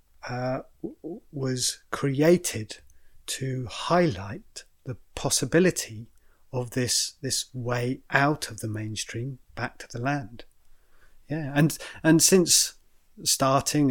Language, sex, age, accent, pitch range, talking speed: English, male, 30-49, British, 120-140 Hz, 105 wpm